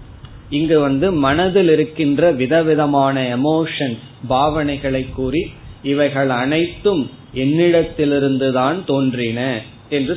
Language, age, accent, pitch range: Tamil, 20-39, native, 125-155 Hz